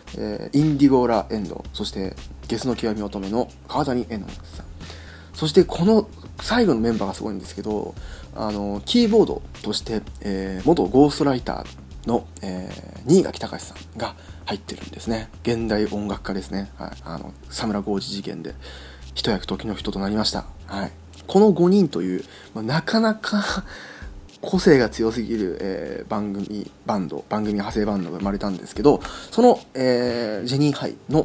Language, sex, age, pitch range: Japanese, male, 20-39, 90-125 Hz